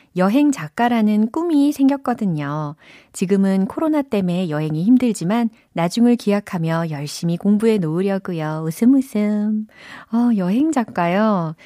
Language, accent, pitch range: Korean, native, 160-240 Hz